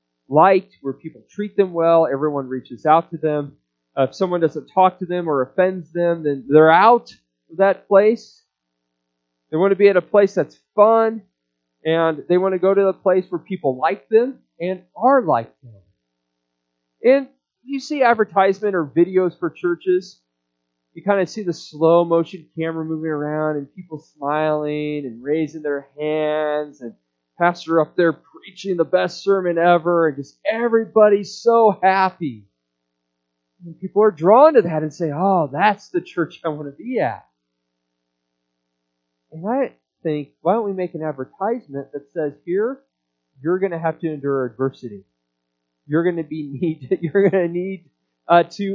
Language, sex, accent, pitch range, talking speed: English, male, American, 130-190 Hz, 165 wpm